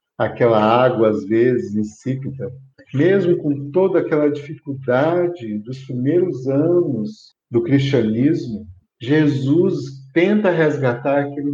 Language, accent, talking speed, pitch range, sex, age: Portuguese, Brazilian, 100 wpm, 135-180 Hz, male, 50-69